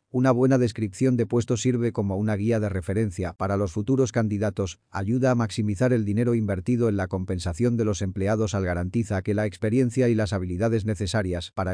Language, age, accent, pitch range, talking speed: Spanish, 40-59, Spanish, 100-120 Hz, 190 wpm